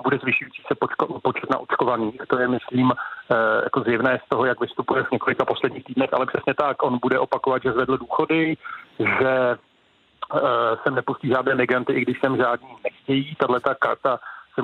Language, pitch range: Czech, 125-140 Hz